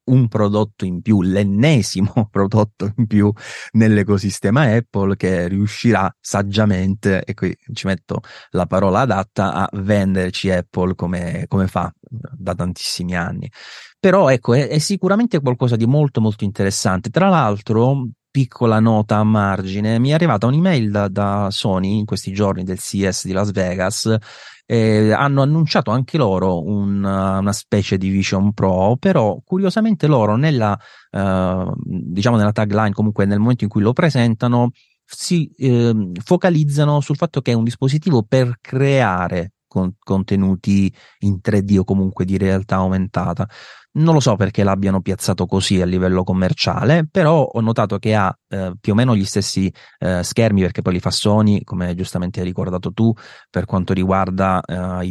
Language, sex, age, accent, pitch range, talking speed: Italian, male, 30-49, native, 95-120 Hz, 155 wpm